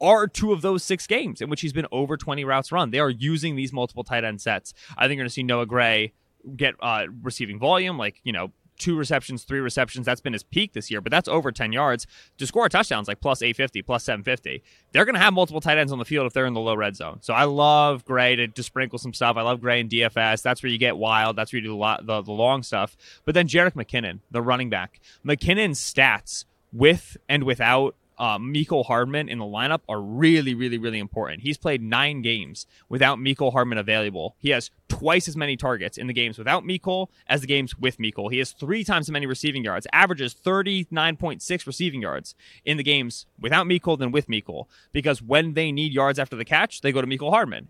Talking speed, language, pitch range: 235 wpm, English, 120-150 Hz